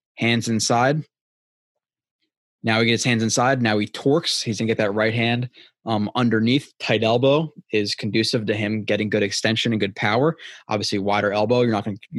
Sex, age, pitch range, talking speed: male, 20-39, 110-135 Hz, 175 wpm